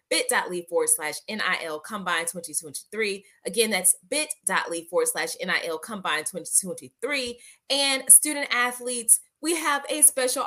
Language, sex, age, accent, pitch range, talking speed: English, female, 20-39, American, 185-275 Hz, 130 wpm